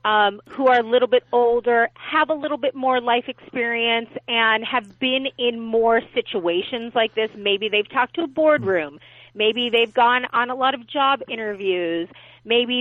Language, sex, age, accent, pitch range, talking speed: English, female, 30-49, American, 195-250 Hz, 180 wpm